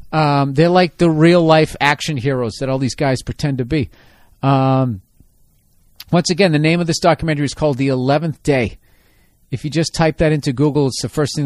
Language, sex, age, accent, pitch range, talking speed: English, male, 40-59, American, 135-185 Hz, 200 wpm